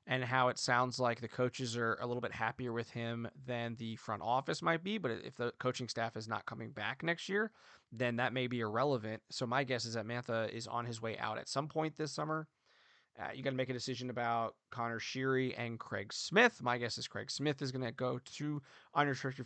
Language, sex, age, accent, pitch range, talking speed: English, male, 20-39, American, 115-145 Hz, 235 wpm